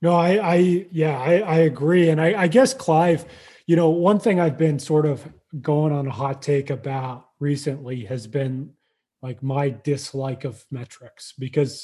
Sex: male